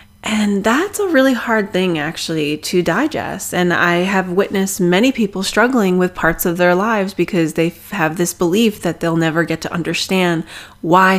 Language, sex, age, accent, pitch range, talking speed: English, female, 20-39, American, 165-200 Hz, 175 wpm